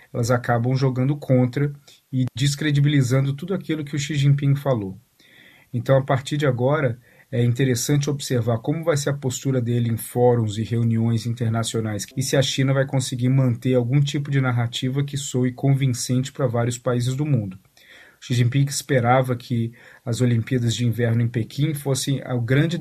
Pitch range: 120-140 Hz